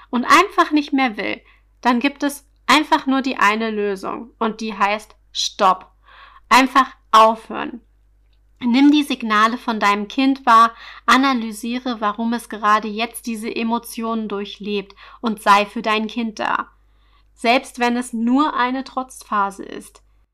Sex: female